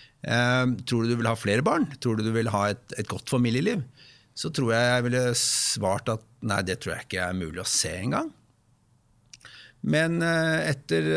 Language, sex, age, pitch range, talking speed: English, male, 60-79, 105-130 Hz, 210 wpm